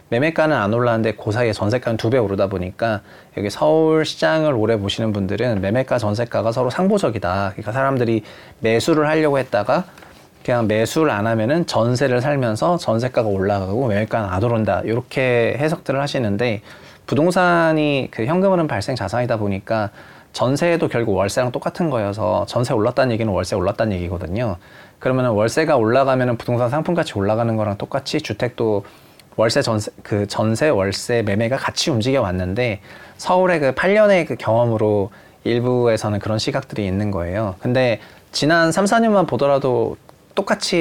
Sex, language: male, Korean